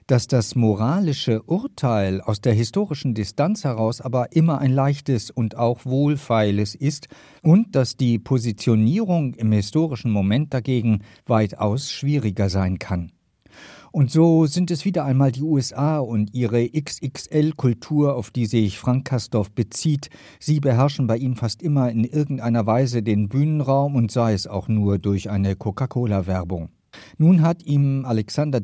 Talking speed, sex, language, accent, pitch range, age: 145 wpm, male, German, German, 110-145 Hz, 50-69